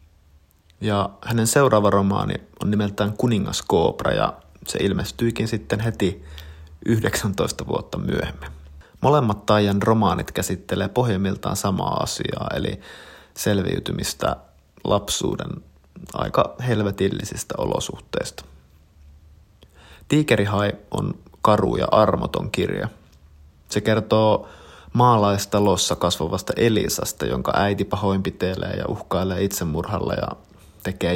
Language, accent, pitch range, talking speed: Finnish, native, 80-105 Hz, 90 wpm